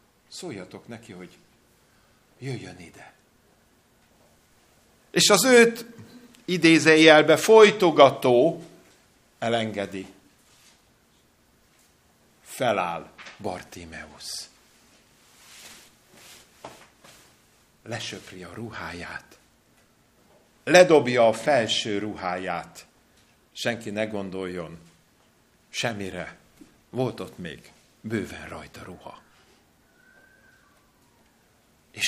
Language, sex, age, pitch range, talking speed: Hungarian, male, 50-69, 105-170 Hz, 60 wpm